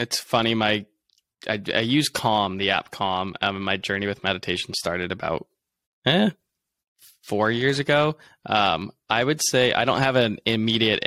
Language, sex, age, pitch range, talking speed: English, male, 10-29, 95-110 Hz, 155 wpm